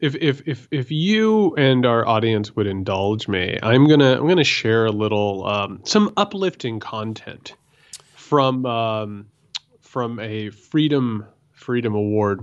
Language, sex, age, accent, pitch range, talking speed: English, male, 30-49, American, 105-150 Hz, 155 wpm